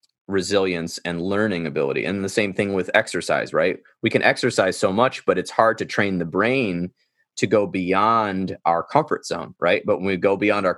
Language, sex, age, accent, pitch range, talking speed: English, male, 30-49, American, 95-115 Hz, 200 wpm